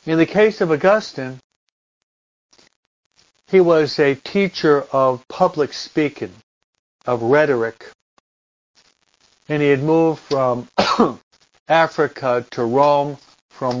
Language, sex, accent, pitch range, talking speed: English, male, American, 130-165 Hz, 100 wpm